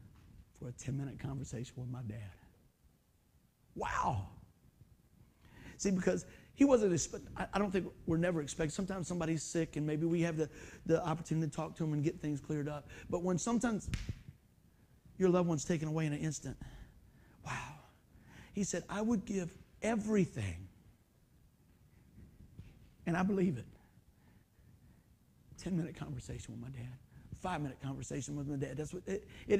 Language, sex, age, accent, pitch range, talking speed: English, male, 50-69, American, 135-190 Hz, 150 wpm